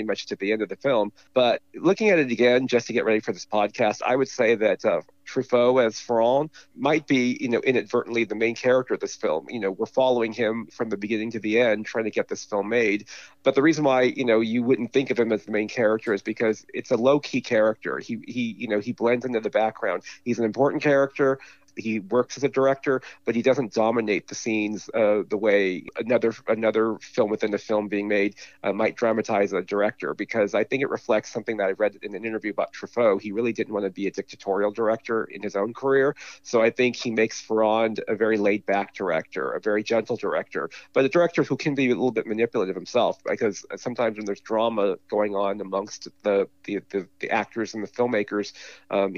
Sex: male